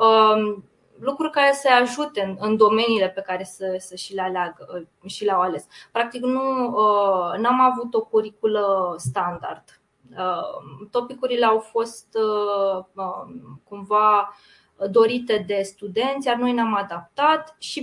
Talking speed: 120 wpm